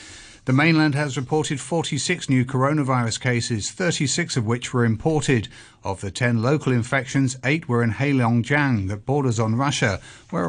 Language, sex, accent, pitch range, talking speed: English, male, British, 120-150 Hz, 155 wpm